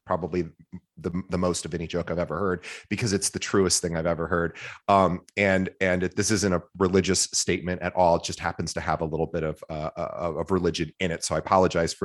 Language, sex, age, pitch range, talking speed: English, male, 30-49, 85-100 Hz, 230 wpm